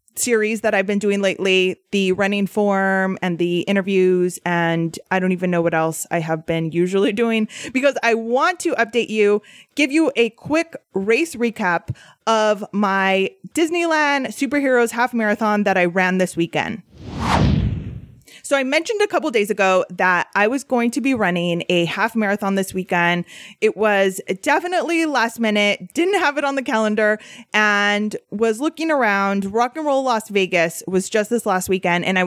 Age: 20-39